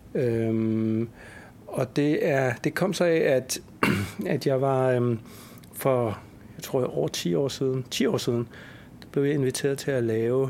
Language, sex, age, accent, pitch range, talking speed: Danish, male, 60-79, native, 115-140 Hz, 165 wpm